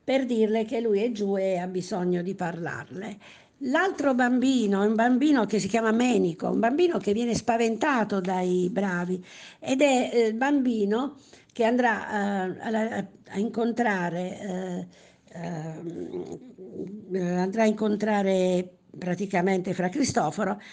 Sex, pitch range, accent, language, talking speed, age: female, 190-235 Hz, native, Italian, 130 wpm, 50-69